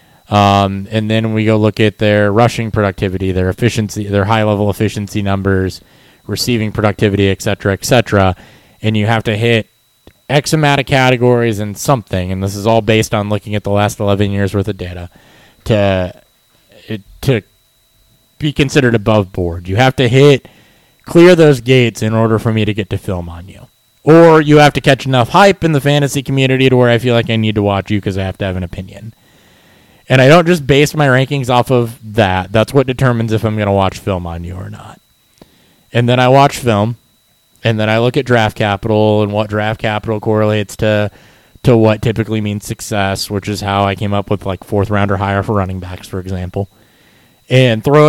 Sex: male